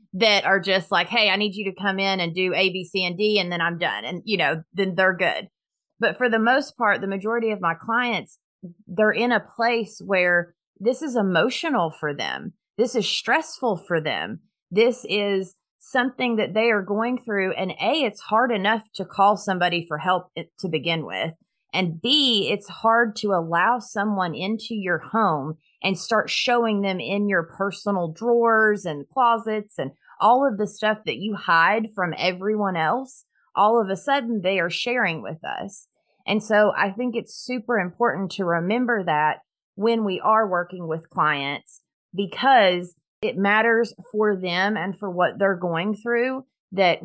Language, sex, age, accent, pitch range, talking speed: English, female, 30-49, American, 175-220 Hz, 180 wpm